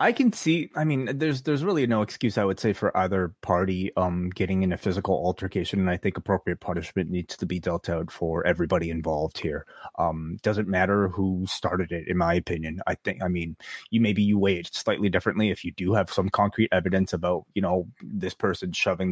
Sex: male